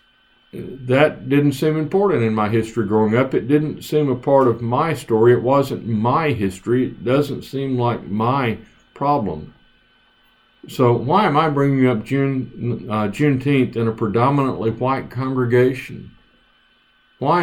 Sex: male